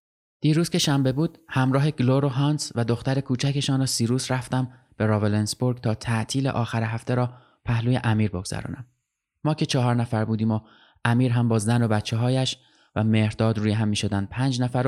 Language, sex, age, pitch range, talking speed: Persian, male, 20-39, 115-135 Hz, 175 wpm